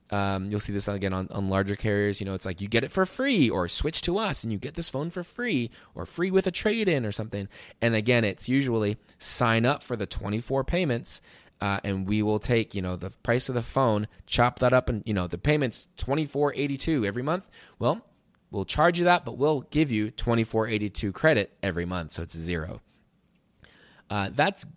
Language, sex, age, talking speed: English, male, 20-39, 210 wpm